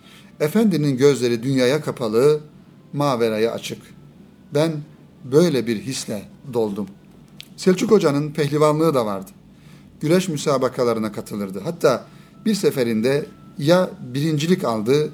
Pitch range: 125-180 Hz